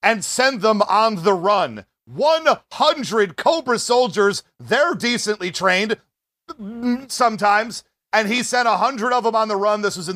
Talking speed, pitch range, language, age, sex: 150 wpm, 195-240 Hz, English, 40-59, male